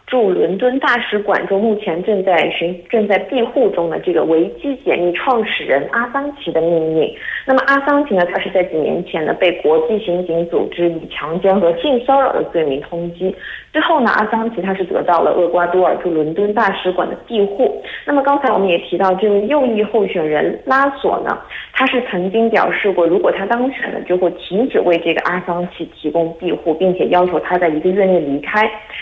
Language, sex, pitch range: Korean, female, 175-245 Hz